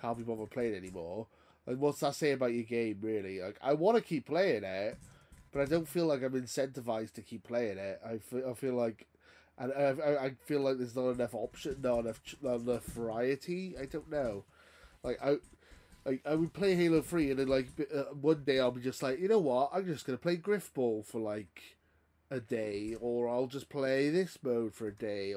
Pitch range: 115-145 Hz